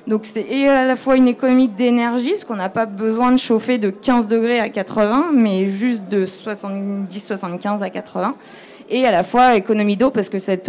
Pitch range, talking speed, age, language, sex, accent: 195-245 Hz, 195 wpm, 20-39, French, female, French